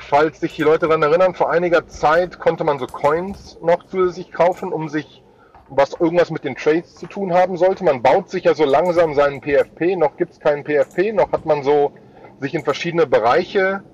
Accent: German